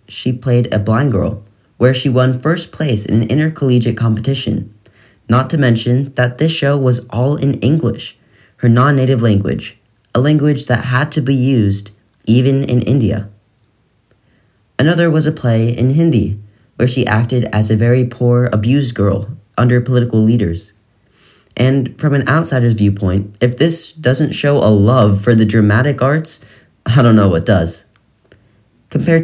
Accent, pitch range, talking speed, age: American, 105-140 Hz, 155 wpm, 10-29